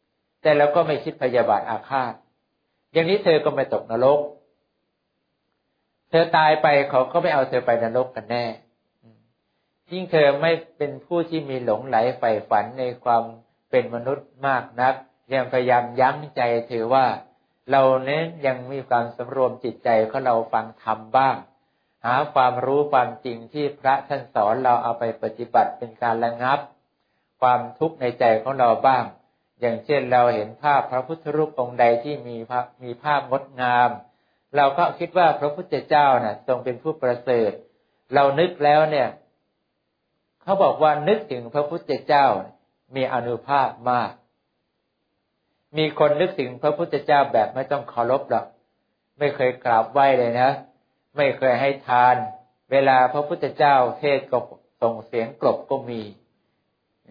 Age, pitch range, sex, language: 60-79, 120-145 Hz, male, English